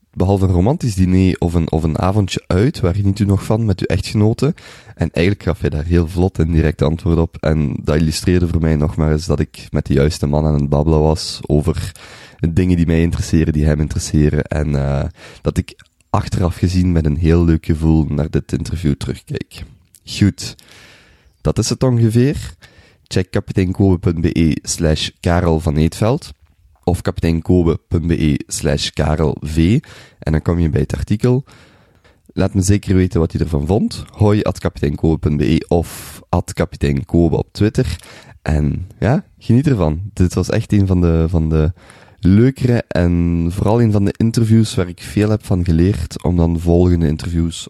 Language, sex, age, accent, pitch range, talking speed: Dutch, male, 20-39, Belgian, 80-100 Hz, 170 wpm